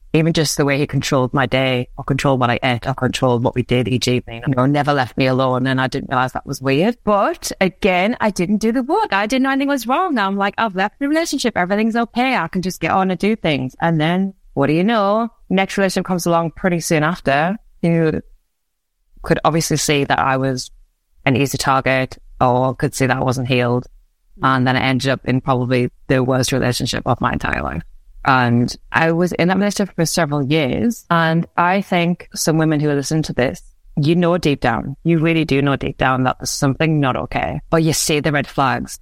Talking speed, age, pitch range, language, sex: 225 wpm, 20-39, 130-175 Hz, English, female